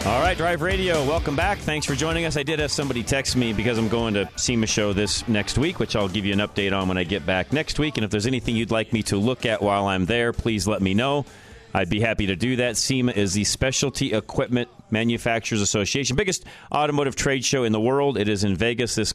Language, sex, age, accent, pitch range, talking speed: English, male, 40-59, American, 95-115 Hz, 250 wpm